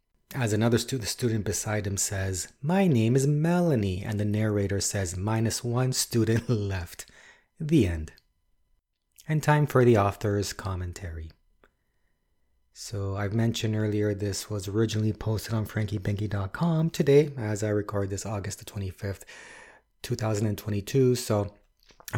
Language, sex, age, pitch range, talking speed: English, male, 30-49, 100-120 Hz, 120 wpm